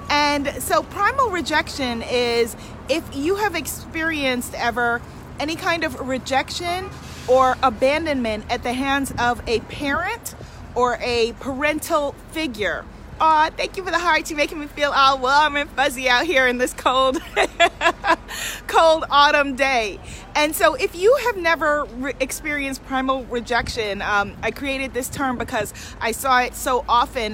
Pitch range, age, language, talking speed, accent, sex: 240-315 Hz, 30-49, English, 145 wpm, American, female